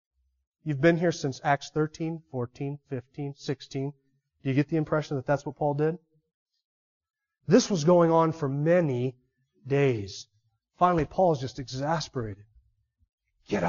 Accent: American